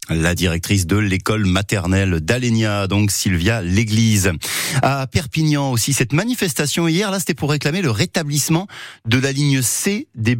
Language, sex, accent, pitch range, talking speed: French, male, French, 100-140 Hz, 150 wpm